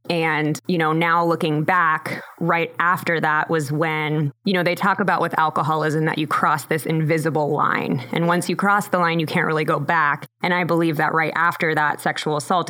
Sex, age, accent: female, 20-39, American